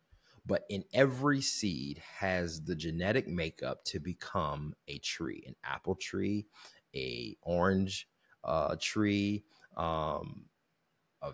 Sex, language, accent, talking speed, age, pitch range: male, English, American, 110 wpm, 30-49, 80-100 Hz